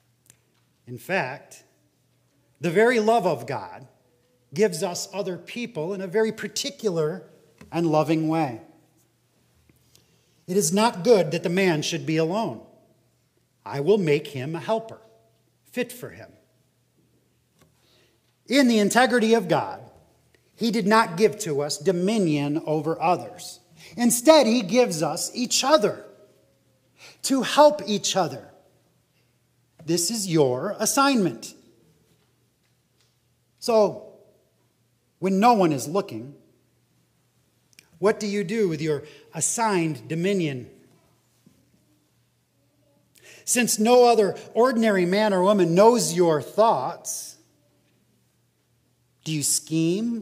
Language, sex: English, male